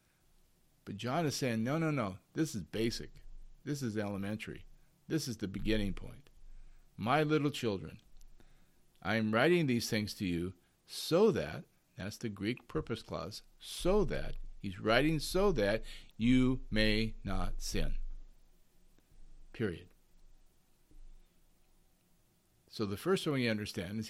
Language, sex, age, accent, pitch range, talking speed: English, male, 50-69, American, 100-135 Hz, 130 wpm